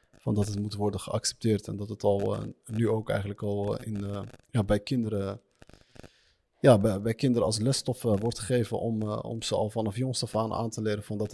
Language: Dutch